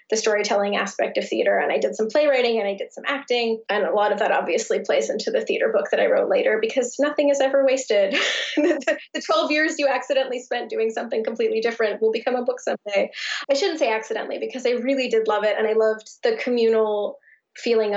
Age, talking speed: 20-39, 225 wpm